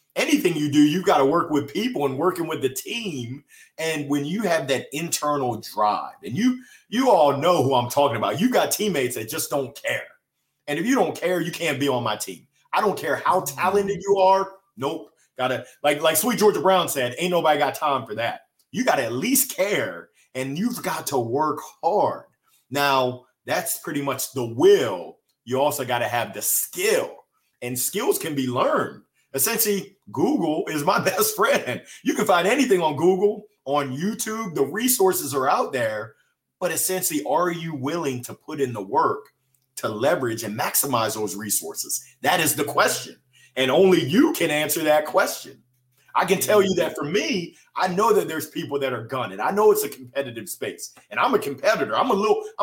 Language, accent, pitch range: English, American, 140-200 Hz